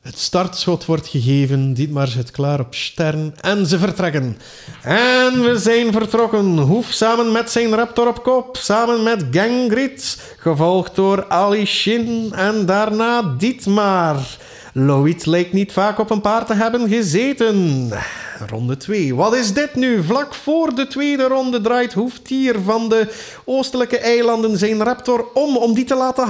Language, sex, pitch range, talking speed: Dutch, male, 160-235 Hz, 155 wpm